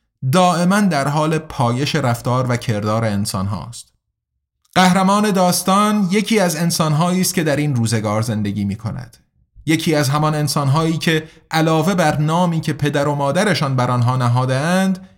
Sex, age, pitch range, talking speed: male, 30-49, 125-175 Hz, 150 wpm